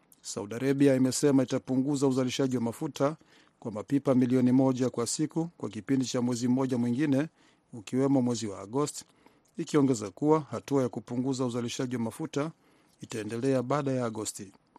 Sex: male